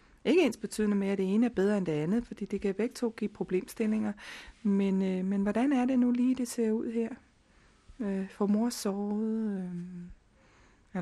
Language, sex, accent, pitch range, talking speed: Danish, female, native, 200-240 Hz, 205 wpm